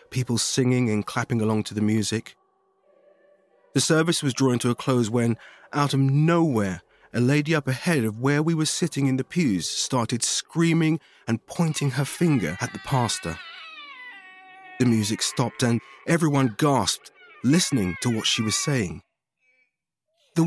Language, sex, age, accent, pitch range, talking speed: English, male, 30-49, British, 110-155 Hz, 155 wpm